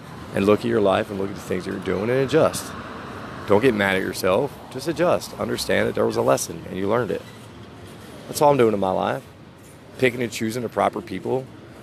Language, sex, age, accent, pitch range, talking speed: English, male, 30-49, American, 105-135 Hz, 225 wpm